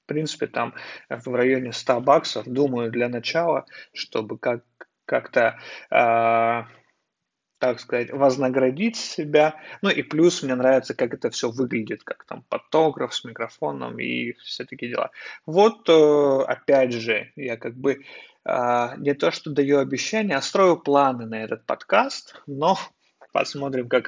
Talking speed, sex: 145 wpm, male